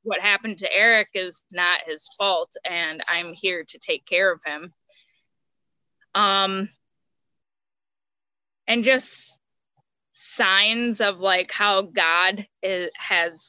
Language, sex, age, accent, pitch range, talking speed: English, female, 20-39, American, 185-225 Hz, 110 wpm